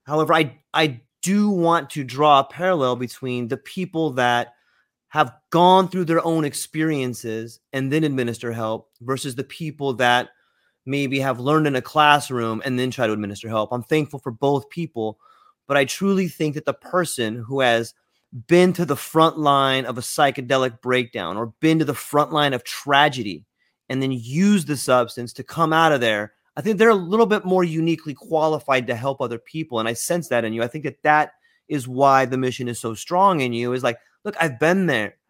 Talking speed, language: 200 wpm, English